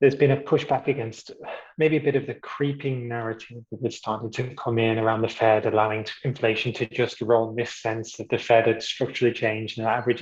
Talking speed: 225 wpm